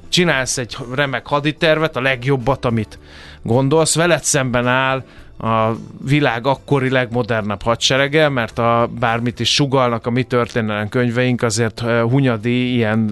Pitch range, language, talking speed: 110-130 Hz, Hungarian, 130 wpm